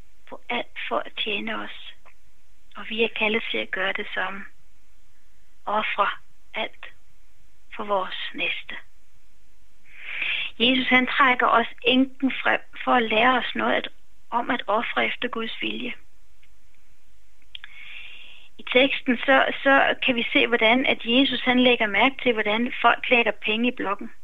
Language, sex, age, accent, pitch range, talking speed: Danish, female, 30-49, native, 215-260 Hz, 140 wpm